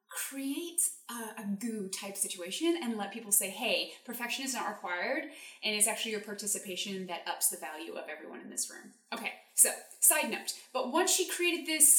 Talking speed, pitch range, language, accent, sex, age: 190 wpm, 205-280 Hz, English, American, female, 20-39